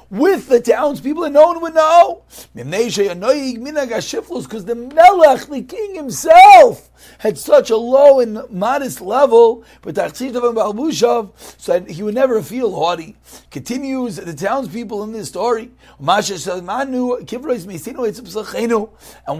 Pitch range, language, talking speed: 200-285 Hz, English, 110 wpm